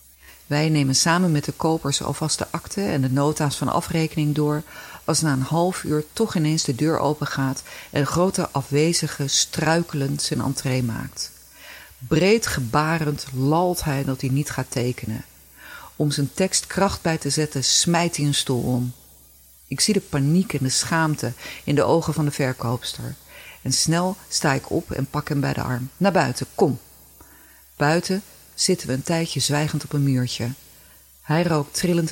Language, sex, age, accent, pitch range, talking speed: Dutch, female, 40-59, Dutch, 120-160 Hz, 175 wpm